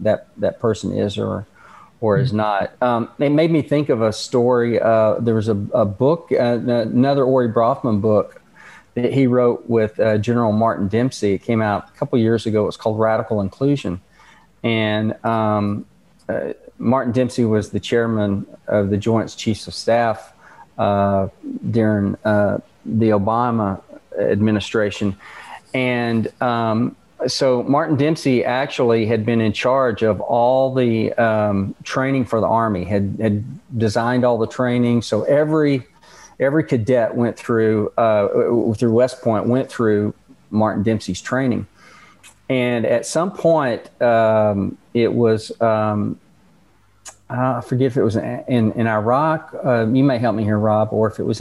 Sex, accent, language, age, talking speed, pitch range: male, American, English, 40-59, 155 wpm, 110-130 Hz